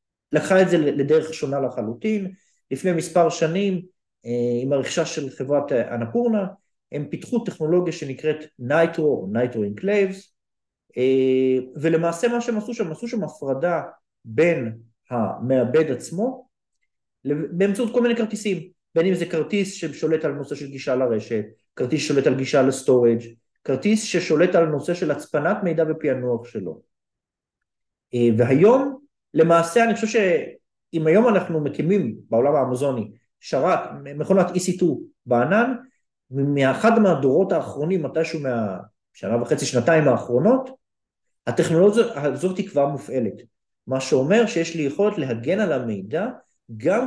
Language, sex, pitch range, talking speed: Hebrew, male, 130-195 Hz, 120 wpm